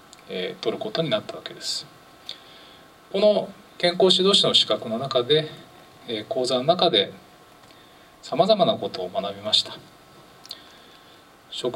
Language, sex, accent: Japanese, male, native